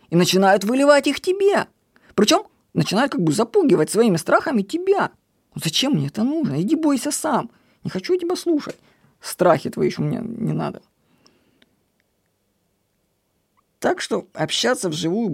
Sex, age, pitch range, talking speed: female, 20-39, 155-215 Hz, 135 wpm